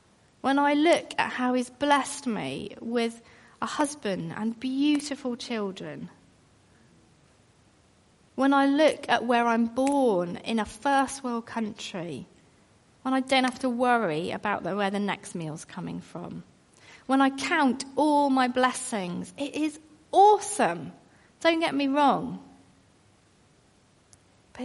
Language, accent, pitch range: English, British, 205-285 Hz